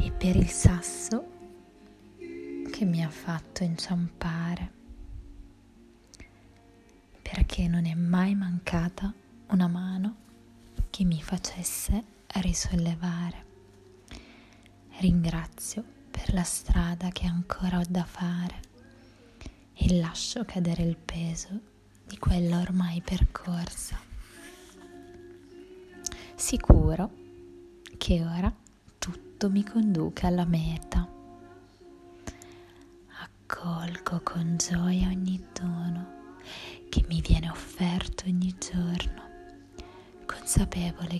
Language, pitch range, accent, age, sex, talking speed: Italian, 115-185 Hz, native, 20-39, female, 85 wpm